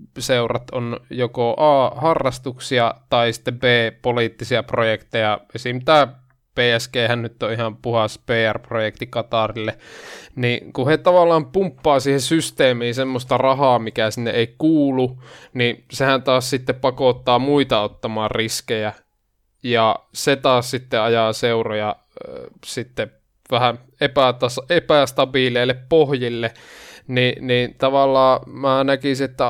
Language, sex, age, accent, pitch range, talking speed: Finnish, male, 20-39, native, 115-130 Hz, 120 wpm